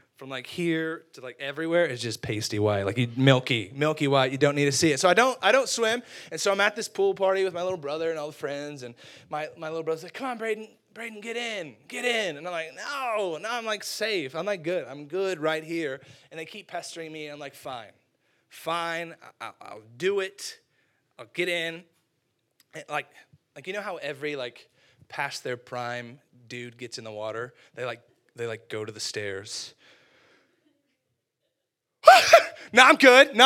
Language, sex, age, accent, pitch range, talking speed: English, male, 20-39, American, 140-235 Hz, 210 wpm